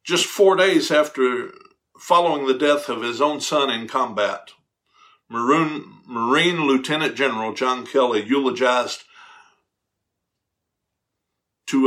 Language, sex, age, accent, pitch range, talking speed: English, male, 60-79, American, 125-195 Hz, 100 wpm